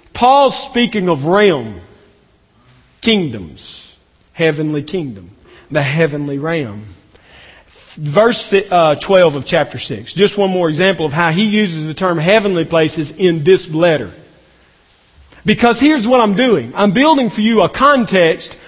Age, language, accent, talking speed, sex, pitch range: 40-59, English, American, 130 wpm, male, 155-225 Hz